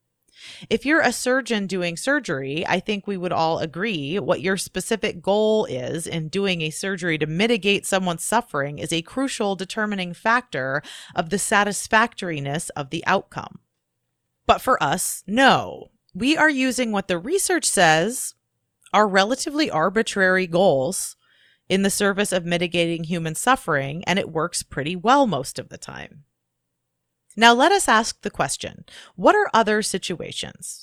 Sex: female